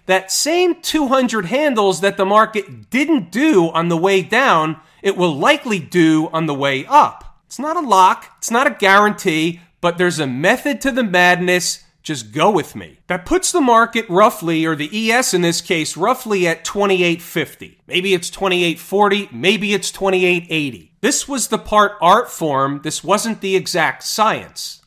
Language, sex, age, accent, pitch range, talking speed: English, male, 40-59, American, 170-235 Hz, 170 wpm